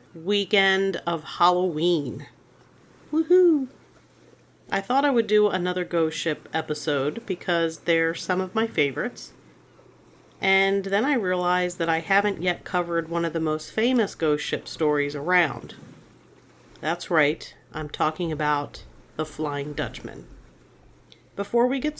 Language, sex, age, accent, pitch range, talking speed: English, female, 40-59, American, 155-195 Hz, 130 wpm